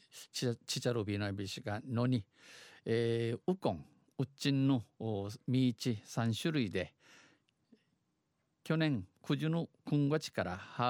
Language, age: Japanese, 50-69